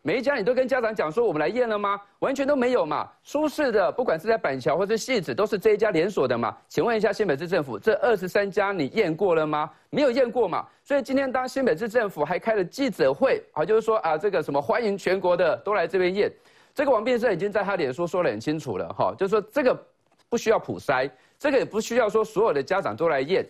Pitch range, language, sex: 200-265 Hz, Chinese, male